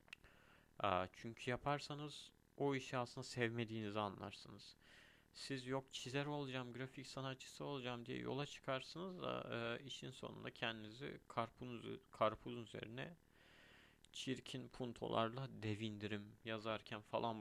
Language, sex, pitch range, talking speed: Turkish, male, 105-125 Hz, 95 wpm